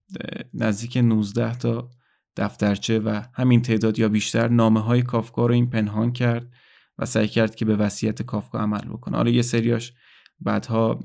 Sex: male